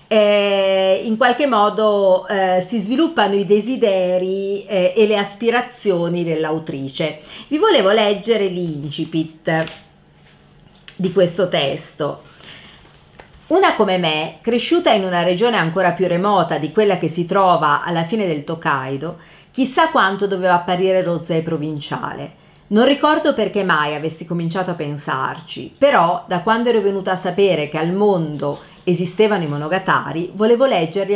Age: 40-59